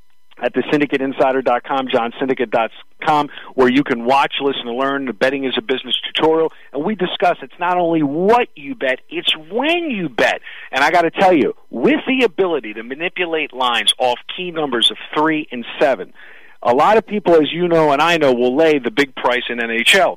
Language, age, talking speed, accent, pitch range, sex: English, 50-69, 210 wpm, American, 125-175 Hz, male